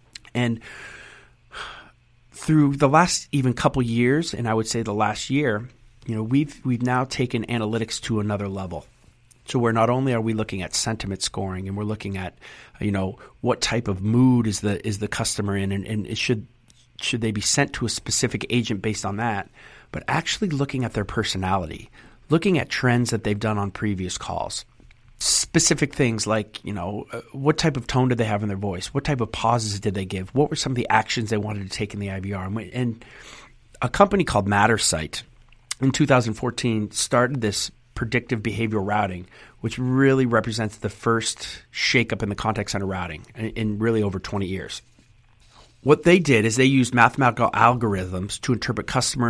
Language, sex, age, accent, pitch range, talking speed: English, male, 40-59, American, 105-125 Hz, 190 wpm